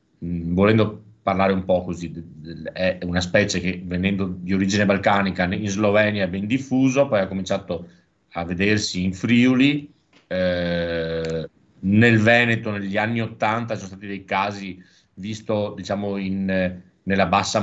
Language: Italian